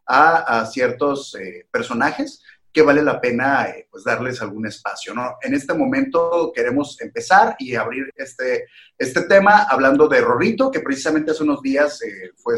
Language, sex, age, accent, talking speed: Spanish, male, 30-49, Mexican, 165 wpm